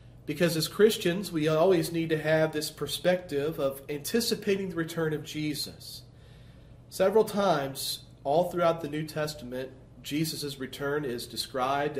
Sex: male